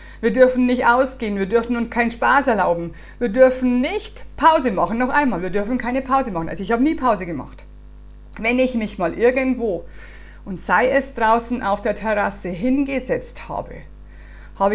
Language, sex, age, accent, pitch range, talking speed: German, female, 50-69, German, 205-260 Hz, 175 wpm